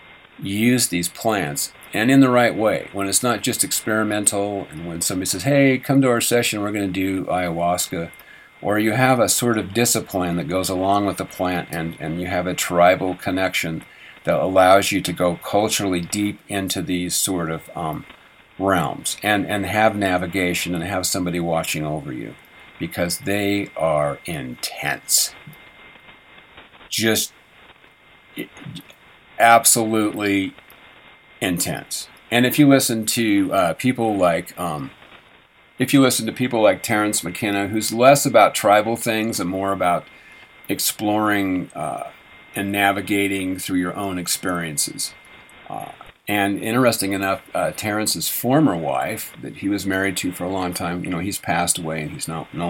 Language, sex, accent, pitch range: English, male, American, 90-110 Hz